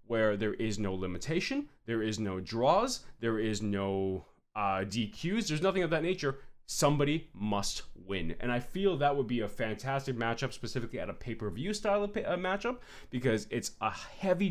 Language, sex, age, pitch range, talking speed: English, male, 20-39, 120-170 Hz, 180 wpm